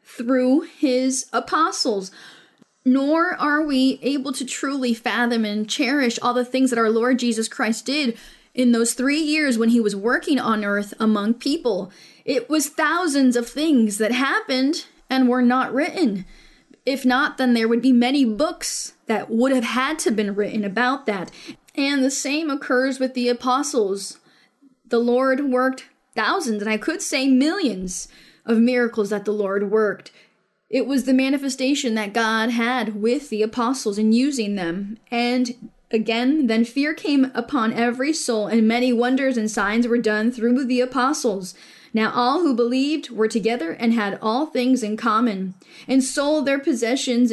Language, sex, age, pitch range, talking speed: English, female, 10-29, 225-270 Hz, 165 wpm